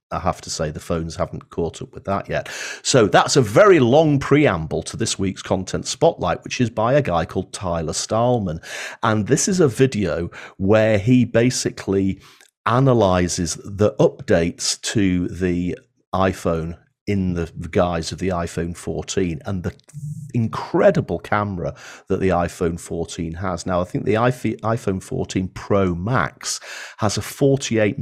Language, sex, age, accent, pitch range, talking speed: English, male, 40-59, British, 85-125 Hz, 155 wpm